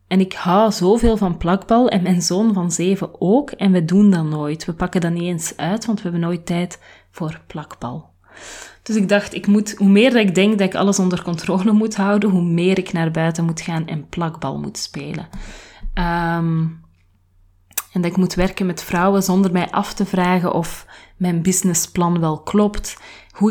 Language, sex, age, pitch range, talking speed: Dutch, female, 30-49, 165-195 Hz, 185 wpm